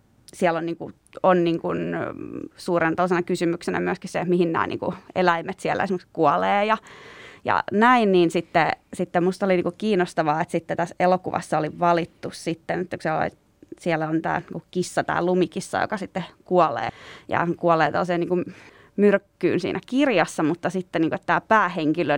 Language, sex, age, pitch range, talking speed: Finnish, female, 20-39, 170-190 Hz, 180 wpm